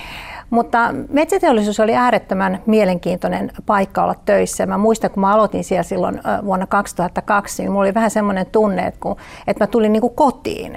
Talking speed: 165 wpm